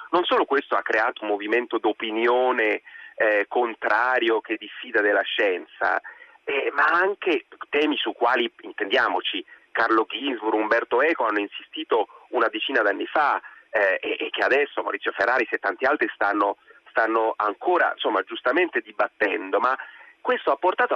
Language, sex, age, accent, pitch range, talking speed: Italian, male, 30-49, native, 320-450 Hz, 145 wpm